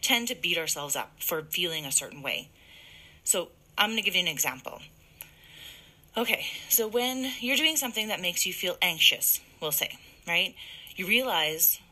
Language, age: English, 30-49